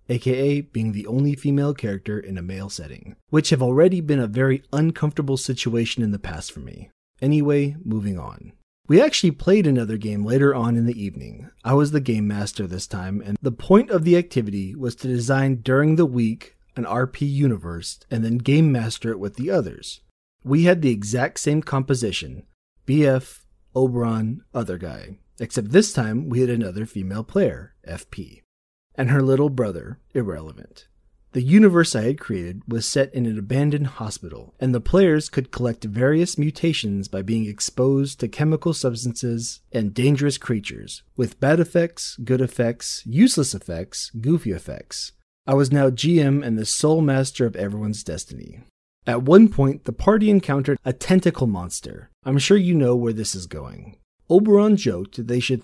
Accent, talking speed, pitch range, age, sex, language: American, 170 wpm, 110-145 Hz, 30-49, male, English